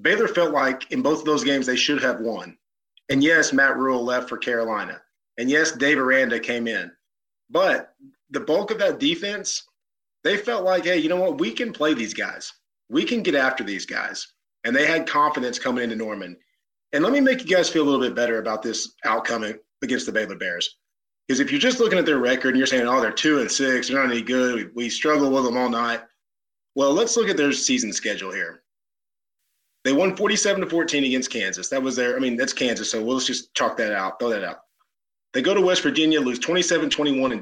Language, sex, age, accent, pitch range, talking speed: English, male, 30-49, American, 130-195 Hz, 220 wpm